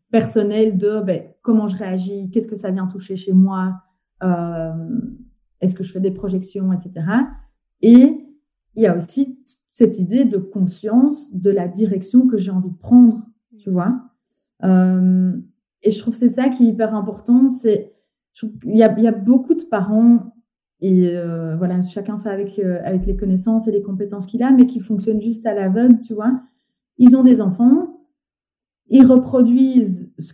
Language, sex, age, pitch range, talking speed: French, female, 30-49, 190-250 Hz, 180 wpm